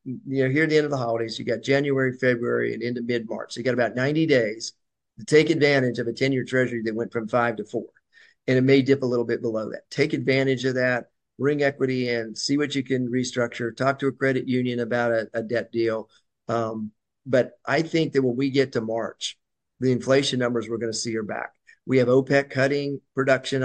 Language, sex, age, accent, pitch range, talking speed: English, male, 50-69, American, 120-135 Hz, 230 wpm